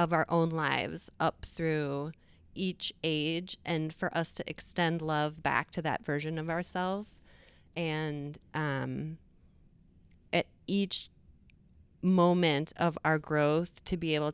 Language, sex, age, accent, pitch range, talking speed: English, female, 30-49, American, 150-180 Hz, 130 wpm